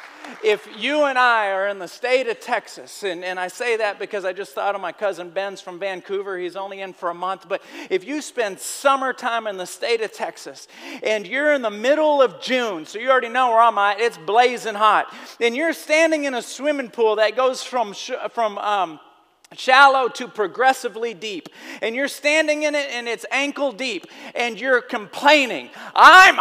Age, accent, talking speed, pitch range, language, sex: 40-59, American, 200 wpm, 220-330 Hz, English, male